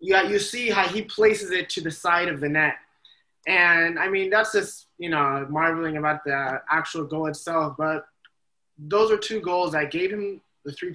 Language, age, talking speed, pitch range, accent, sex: English, 20-39, 195 wpm, 150-185 Hz, American, male